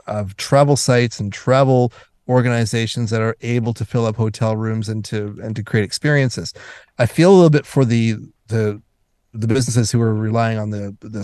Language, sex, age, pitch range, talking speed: English, male, 30-49, 110-130 Hz, 190 wpm